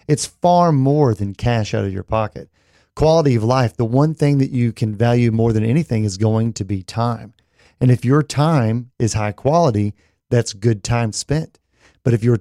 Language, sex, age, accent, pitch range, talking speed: English, male, 40-59, American, 115-140 Hz, 200 wpm